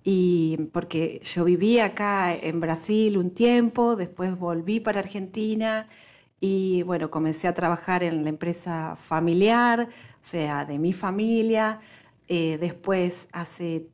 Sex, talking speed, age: female, 130 wpm, 40-59